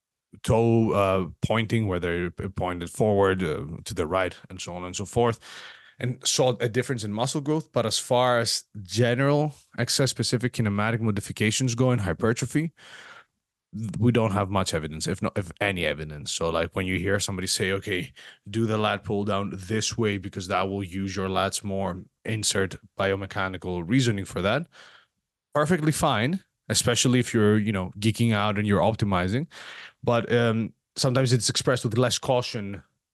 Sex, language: male, English